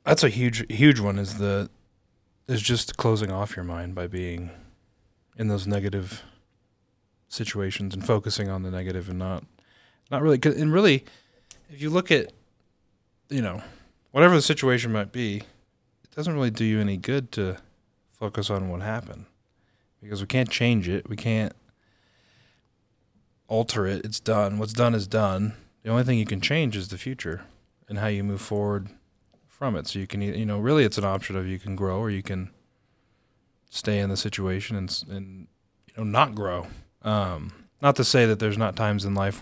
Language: English